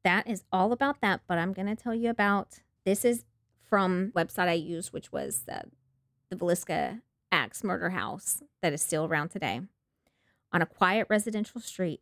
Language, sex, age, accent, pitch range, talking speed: English, female, 30-49, American, 155-180 Hz, 180 wpm